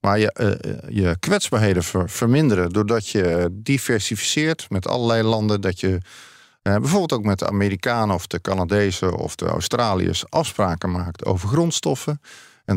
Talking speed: 150 wpm